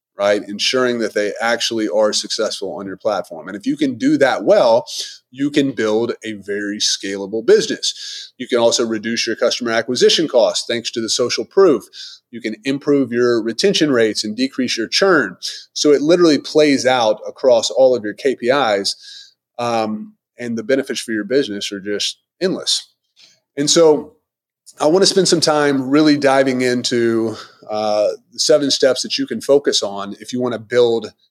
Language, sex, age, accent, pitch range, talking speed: English, male, 30-49, American, 115-155 Hz, 175 wpm